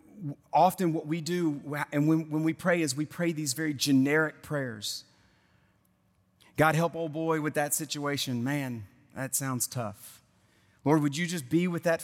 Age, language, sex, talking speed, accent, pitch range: 30-49, English, male, 170 wpm, American, 155-180 Hz